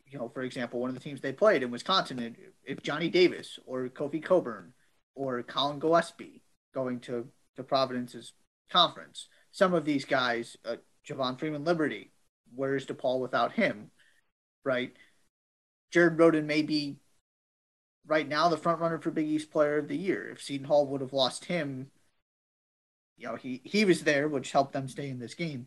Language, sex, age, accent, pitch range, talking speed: English, male, 30-49, American, 125-155 Hz, 180 wpm